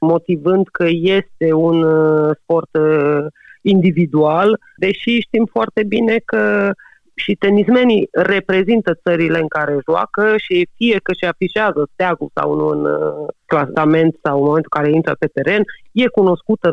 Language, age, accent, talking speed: Romanian, 30-49, native, 135 wpm